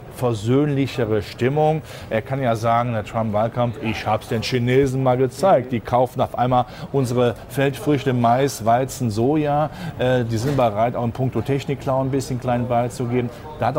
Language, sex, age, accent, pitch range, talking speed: German, male, 40-59, German, 115-140 Hz, 180 wpm